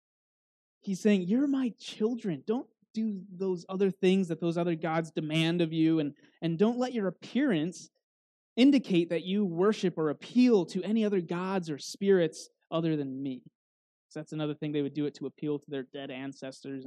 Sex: male